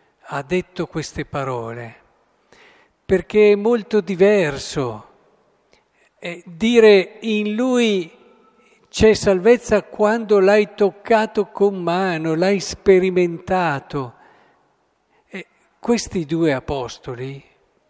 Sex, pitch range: male, 140-190 Hz